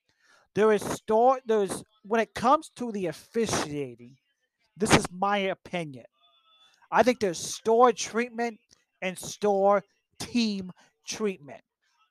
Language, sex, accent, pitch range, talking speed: English, male, American, 175-225 Hz, 115 wpm